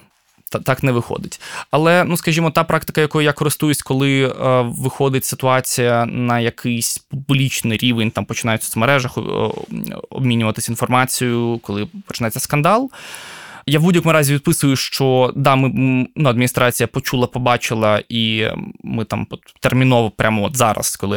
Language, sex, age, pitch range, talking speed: Ukrainian, male, 20-39, 115-140 Hz, 140 wpm